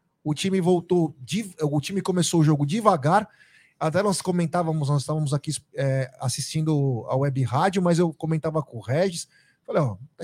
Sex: male